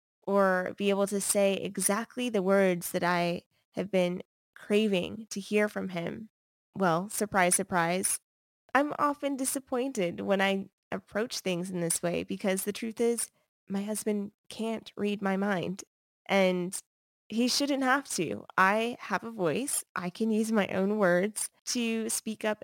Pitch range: 180-215 Hz